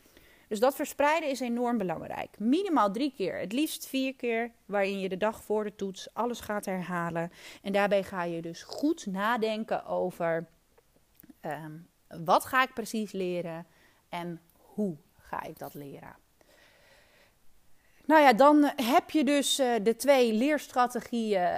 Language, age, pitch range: Dutch, 30-49, 185-255 Hz